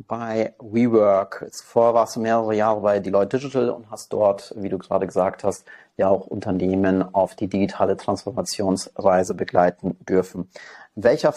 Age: 30-49